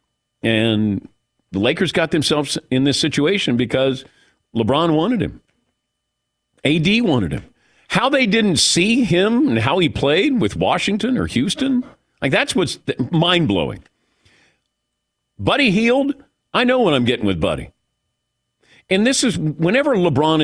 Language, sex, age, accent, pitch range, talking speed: English, male, 50-69, American, 115-195 Hz, 135 wpm